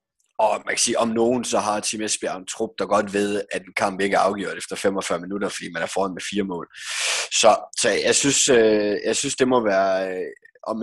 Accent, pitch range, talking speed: native, 95-110 Hz, 225 wpm